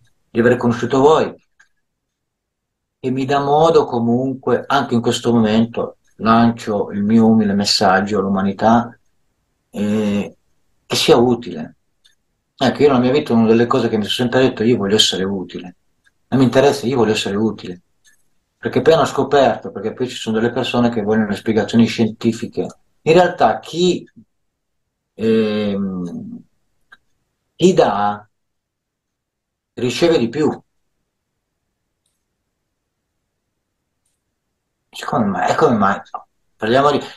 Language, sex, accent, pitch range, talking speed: Italian, male, native, 110-135 Hz, 125 wpm